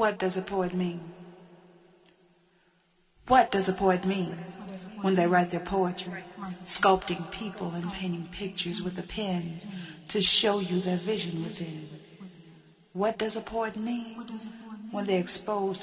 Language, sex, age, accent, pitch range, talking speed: English, female, 40-59, American, 180-200 Hz, 140 wpm